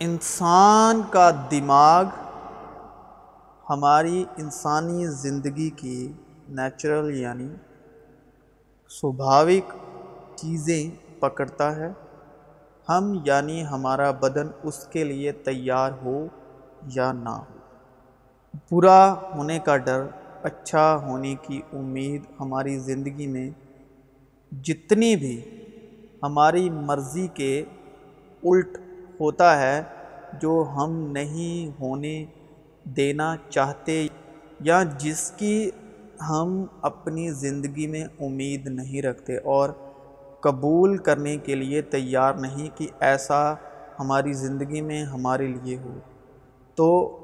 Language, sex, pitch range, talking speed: Urdu, male, 135-165 Hz, 95 wpm